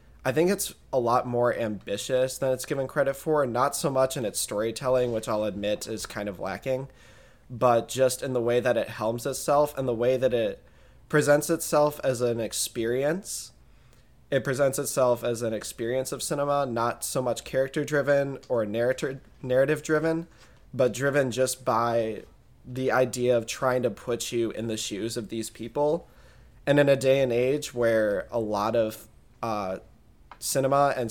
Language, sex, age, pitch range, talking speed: English, male, 20-39, 110-130 Hz, 175 wpm